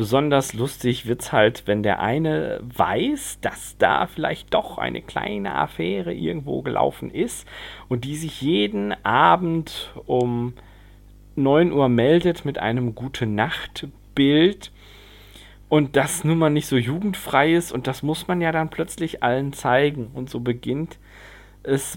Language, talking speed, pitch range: German, 140 wpm, 105-145 Hz